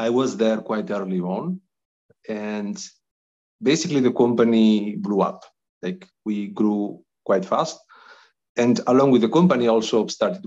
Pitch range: 105-160 Hz